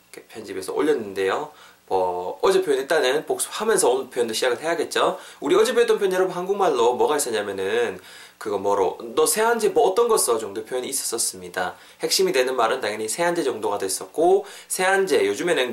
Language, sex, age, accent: Korean, male, 20-39, native